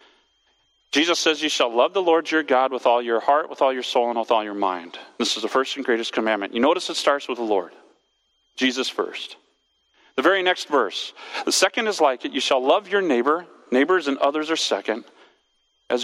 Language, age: English, 40-59